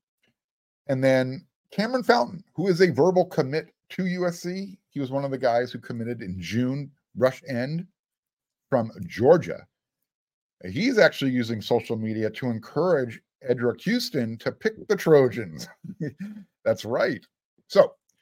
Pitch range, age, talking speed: 110-155 Hz, 50-69, 135 wpm